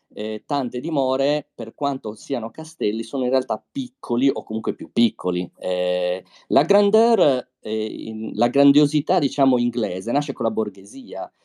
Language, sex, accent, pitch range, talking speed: Italian, male, native, 105-140 Hz, 145 wpm